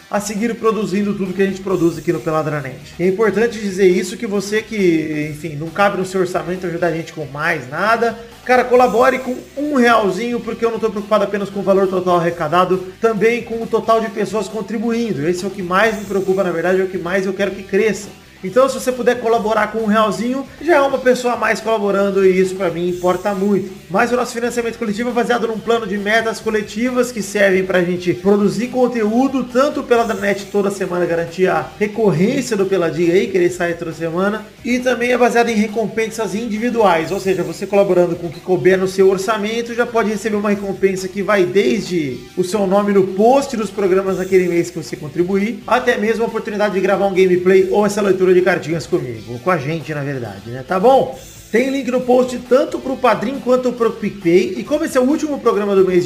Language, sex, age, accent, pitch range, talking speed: Portuguese, male, 30-49, Brazilian, 185-230 Hz, 220 wpm